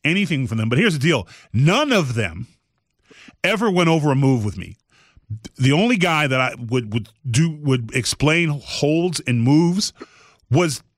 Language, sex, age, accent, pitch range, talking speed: English, male, 30-49, American, 110-140 Hz, 175 wpm